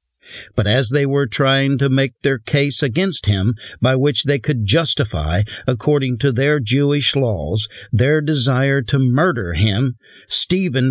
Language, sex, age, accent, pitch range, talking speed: English, male, 50-69, American, 115-145 Hz, 150 wpm